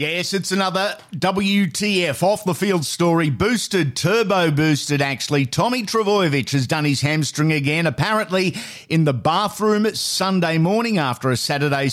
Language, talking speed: English, 130 wpm